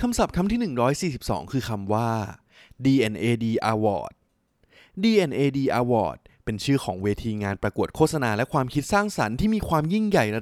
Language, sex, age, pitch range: Thai, male, 20-39, 105-140 Hz